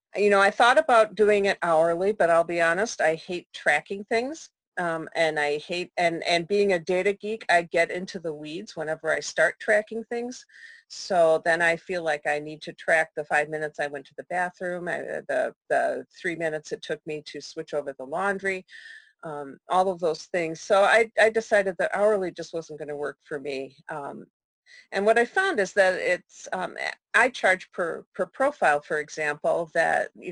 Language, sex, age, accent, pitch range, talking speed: English, female, 40-59, American, 155-195 Hz, 200 wpm